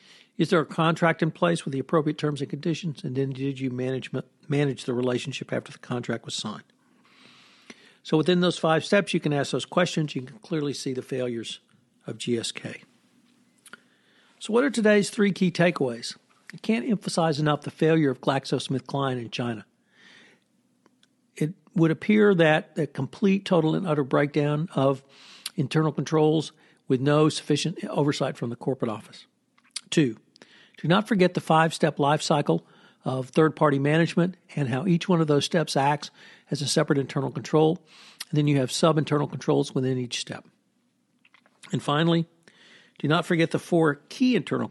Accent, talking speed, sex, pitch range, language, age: American, 165 wpm, male, 135-170 Hz, English, 60-79